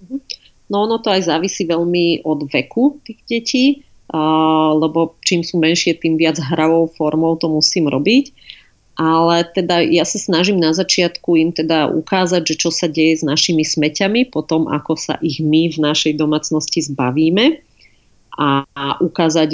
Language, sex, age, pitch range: Slovak, female, 30-49, 150-170 Hz